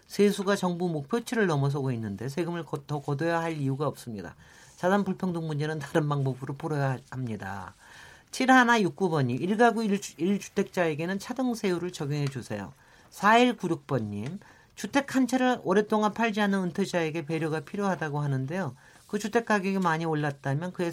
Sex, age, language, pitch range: male, 40-59, Korean, 145-200 Hz